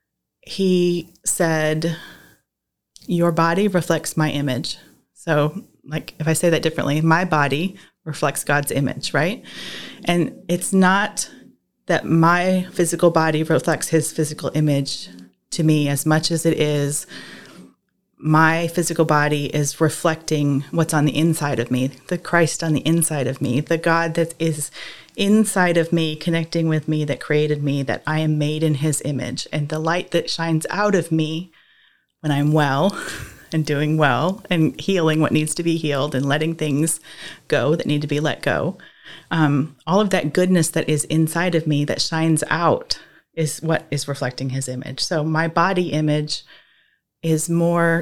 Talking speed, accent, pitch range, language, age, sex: 165 wpm, American, 150-170 Hz, English, 30-49, female